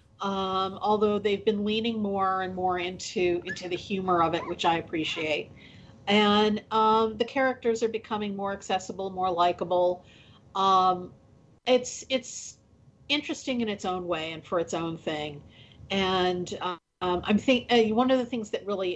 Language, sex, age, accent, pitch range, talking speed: English, female, 40-59, American, 170-210 Hz, 160 wpm